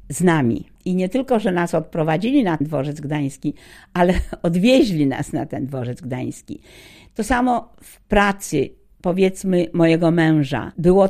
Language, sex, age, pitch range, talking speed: Polish, female, 50-69, 150-185 Hz, 130 wpm